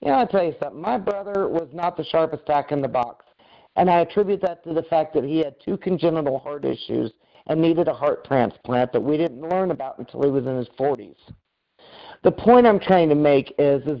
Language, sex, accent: English, male, American